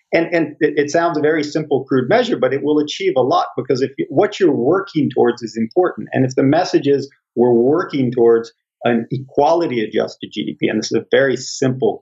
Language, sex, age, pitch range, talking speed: English, male, 40-59, 120-150 Hz, 200 wpm